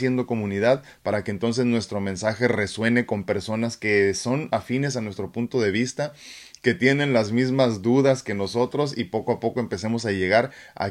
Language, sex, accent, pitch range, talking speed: Spanish, male, Mexican, 100-120 Hz, 175 wpm